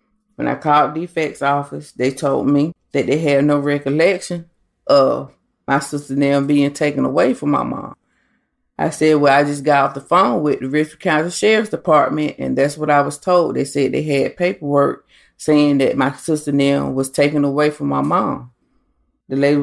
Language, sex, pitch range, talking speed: English, female, 140-155 Hz, 195 wpm